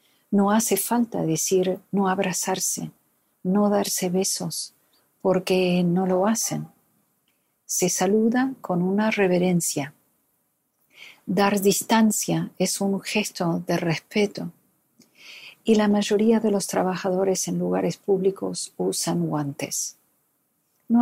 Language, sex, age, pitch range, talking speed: Spanish, female, 50-69, 175-205 Hz, 105 wpm